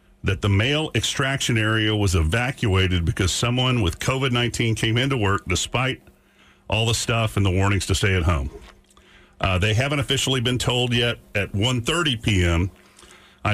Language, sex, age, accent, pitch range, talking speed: English, male, 50-69, American, 95-125 Hz, 160 wpm